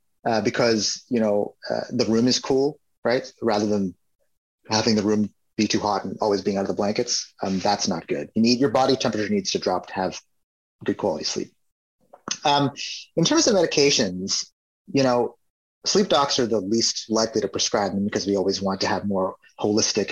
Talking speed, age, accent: 195 wpm, 30-49, American